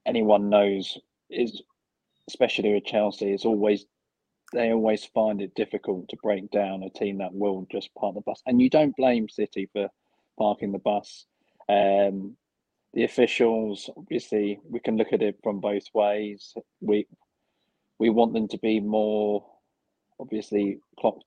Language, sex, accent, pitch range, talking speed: English, male, British, 100-110 Hz, 155 wpm